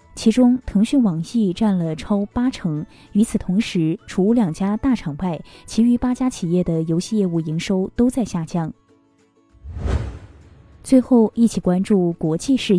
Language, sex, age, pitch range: Chinese, female, 20-39, 170-225 Hz